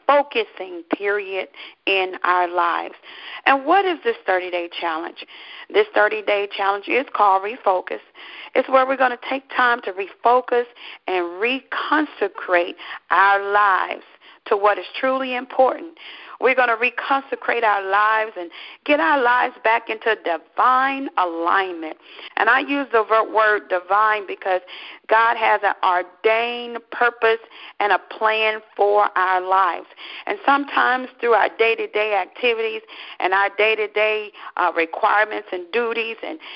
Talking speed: 130 wpm